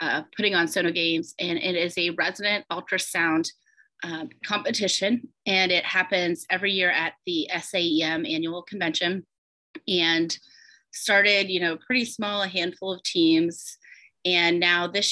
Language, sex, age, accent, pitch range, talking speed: English, female, 30-49, American, 170-195 Hz, 145 wpm